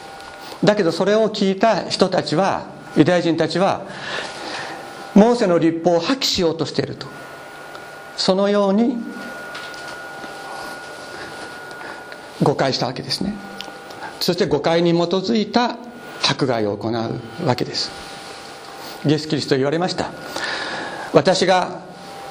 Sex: male